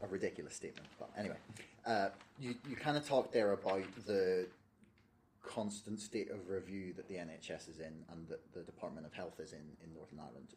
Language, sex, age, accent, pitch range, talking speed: English, male, 30-49, British, 95-115 Hz, 195 wpm